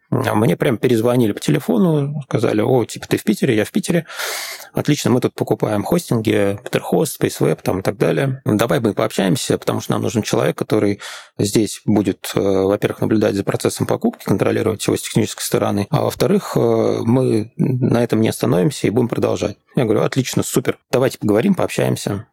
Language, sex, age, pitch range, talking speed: Russian, male, 20-39, 105-135 Hz, 170 wpm